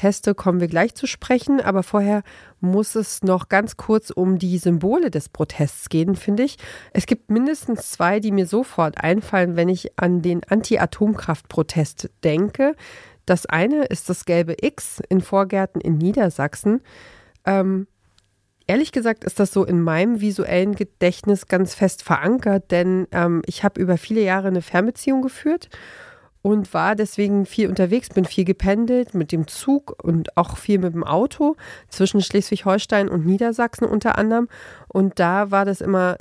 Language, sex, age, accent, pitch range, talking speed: German, female, 40-59, German, 165-205 Hz, 155 wpm